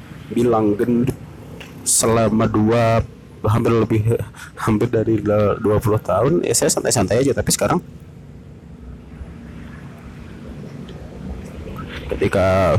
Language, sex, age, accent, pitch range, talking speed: English, male, 30-49, Indonesian, 95-115 Hz, 85 wpm